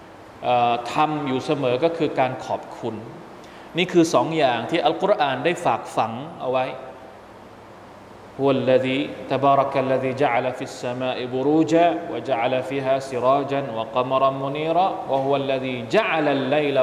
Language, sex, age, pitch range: Thai, male, 20-39, 125-150 Hz